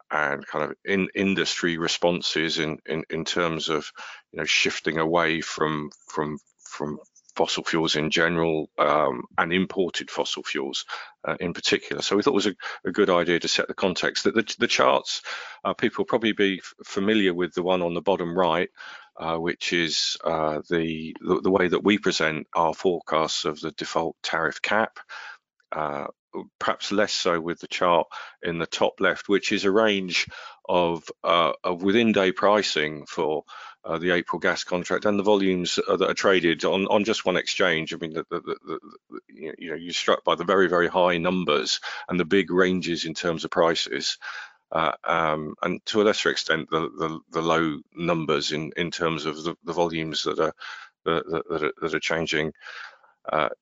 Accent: British